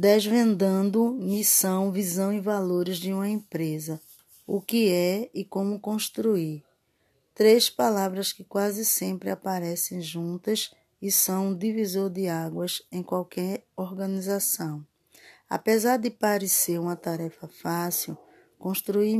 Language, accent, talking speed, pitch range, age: Portuguese, Brazilian, 115 wpm, 170-205 Hz, 20-39